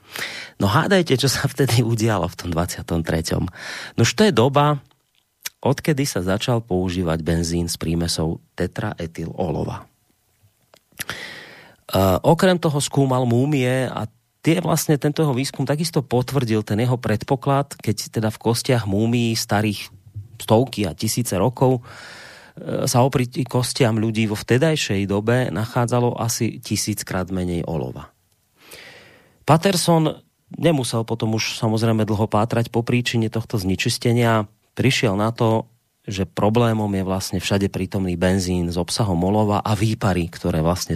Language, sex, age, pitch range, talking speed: Slovak, male, 30-49, 100-130 Hz, 130 wpm